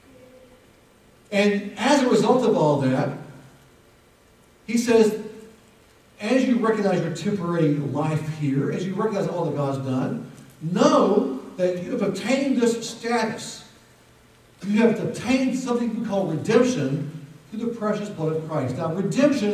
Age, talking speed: 50-69, 140 wpm